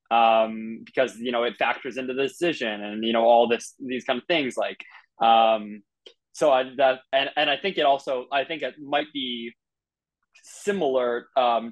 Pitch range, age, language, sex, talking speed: 115-135 Hz, 20-39, English, male, 185 wpm